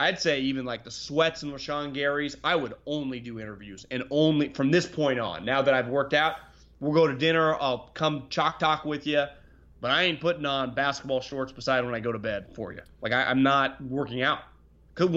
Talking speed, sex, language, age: 225 wpm, male, English, 30-49